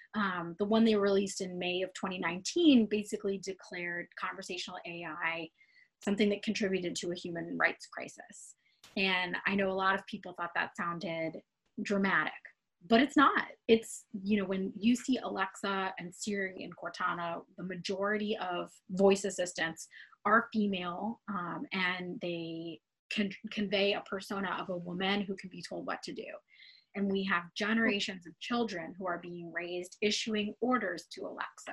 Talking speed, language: 160 wpm, English